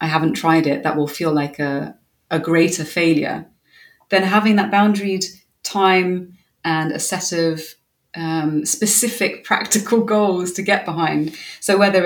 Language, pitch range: English, 155-185 Hz